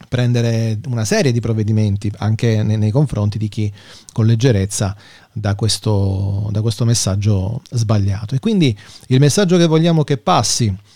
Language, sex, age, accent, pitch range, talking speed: Italian, male, 40-59, native, 110-140 Hz, 135 wpm